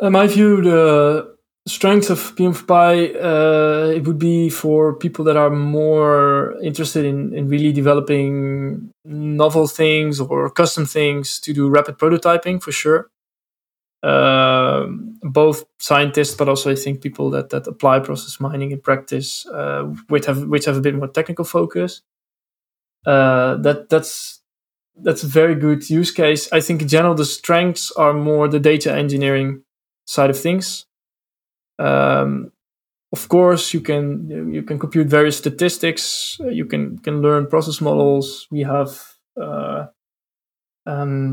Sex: male